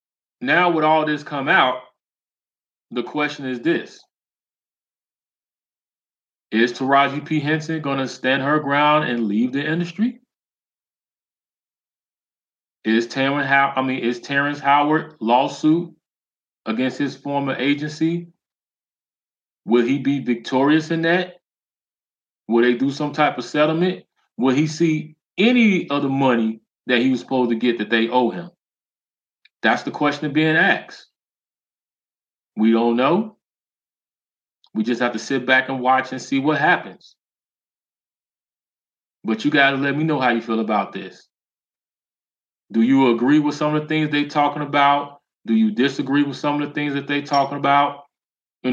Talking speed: 150 wpm